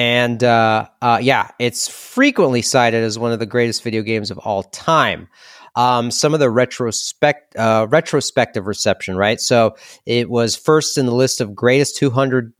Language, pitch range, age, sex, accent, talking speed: English, 120-160 Hz, 30-49, male, American, 170 wpm